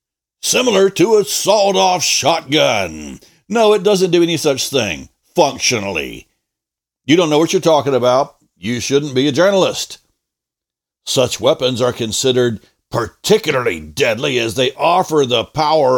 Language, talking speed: English, 135 wpm